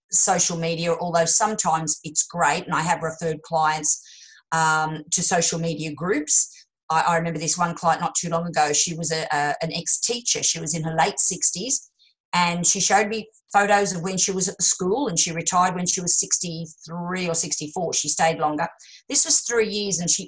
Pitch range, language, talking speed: 165-225 Hz, English, 200 wpm